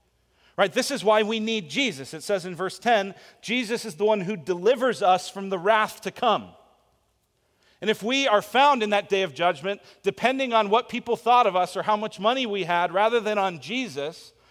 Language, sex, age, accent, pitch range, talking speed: English, male, 40-59, American, 175-245 Hz, 210 wpm